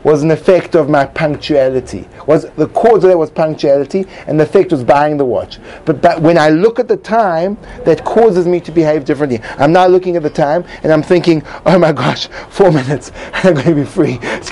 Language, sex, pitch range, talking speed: English, male, 140-175 Hz, 225 wpm